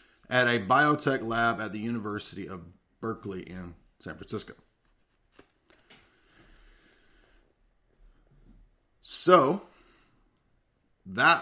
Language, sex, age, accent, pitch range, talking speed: English, male, 40-59, American, 105-130 Hz, 75 wpm